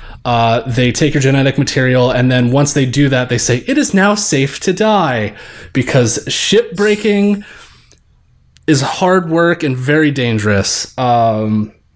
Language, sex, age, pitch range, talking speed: English, male, 20-39, 110-145 Hz, 150 wpm